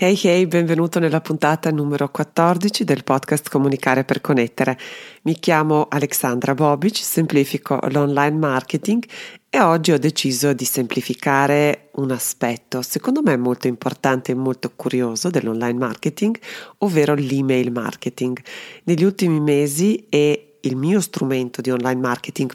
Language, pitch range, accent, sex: Italian, 130-155 Hz, native, female